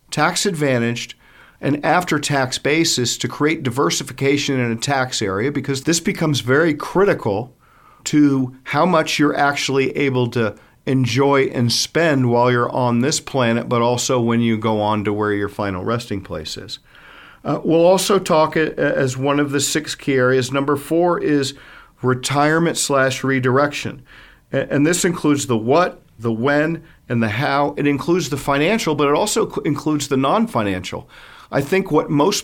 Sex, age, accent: male, 50-69, American